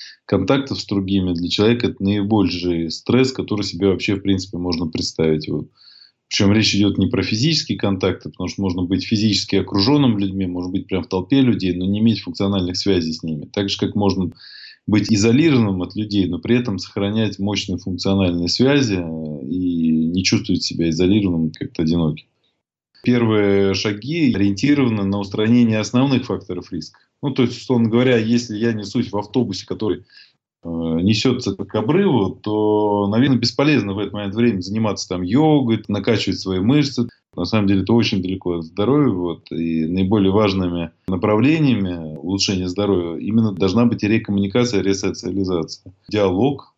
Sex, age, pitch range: male, 20-39, 90-115 Hz